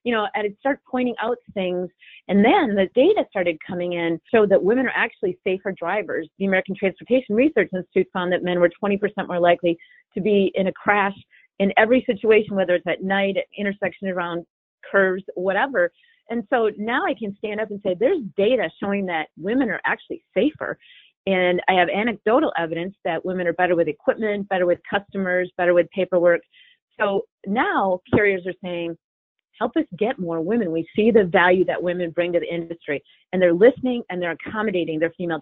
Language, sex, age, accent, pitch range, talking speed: English, female, 30-49, American, 175-215 Hz, 190 wpm